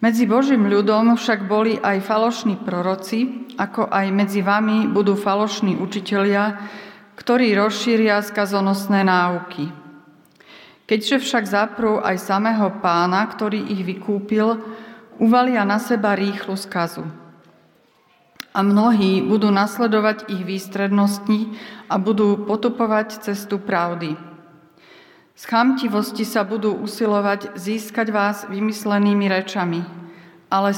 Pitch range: 195-220 Hz